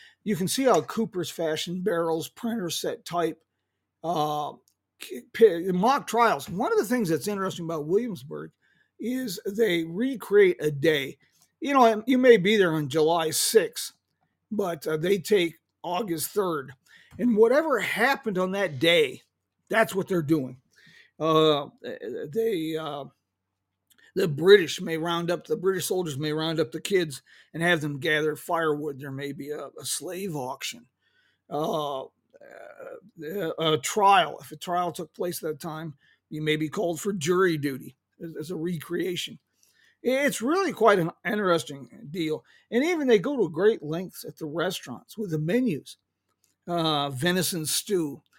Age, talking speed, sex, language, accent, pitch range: 40-59, 155 wpm, male, English, American, 155-225 Hz